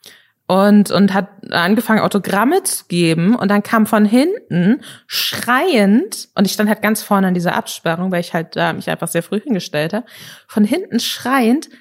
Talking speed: 190 wpm